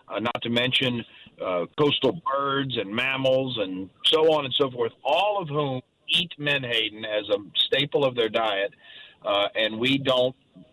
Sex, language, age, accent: male, English, 50-69, American